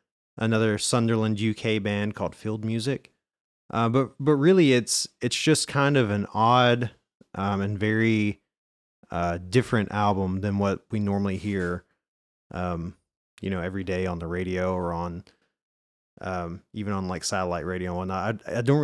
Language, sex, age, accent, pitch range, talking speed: English, male, 30-49, American, 95-125 Hz, 160 wpm